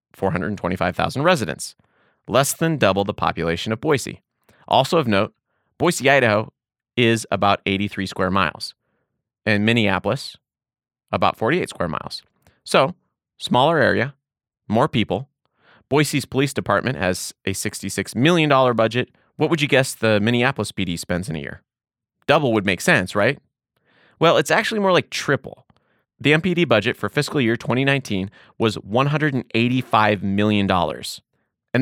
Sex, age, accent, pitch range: male, 30-49, American, 100-135 Hz